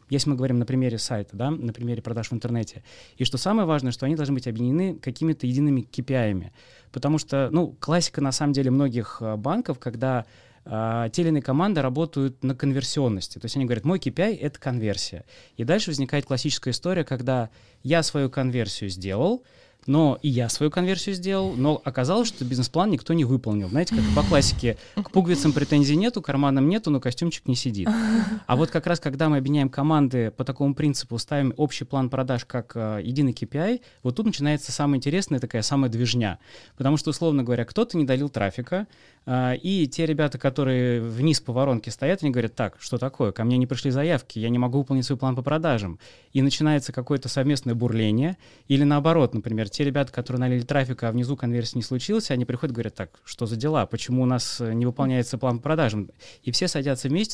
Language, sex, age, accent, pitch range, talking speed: Russian, male, 20-39, native, 120-150 Hz, 190 wpm